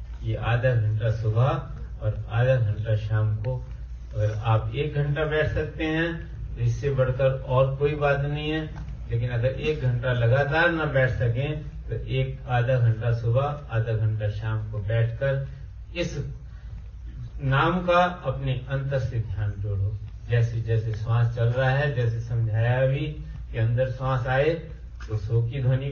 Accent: native